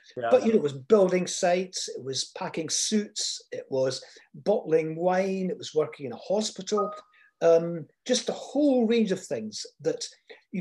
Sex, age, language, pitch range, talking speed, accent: male, 50-69, English, 170-260 Hz, 170 wpm, British